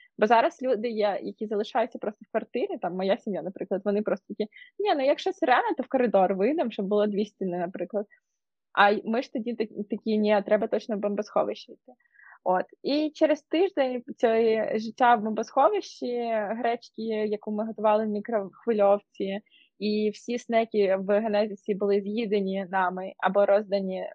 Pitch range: 205-250 Hz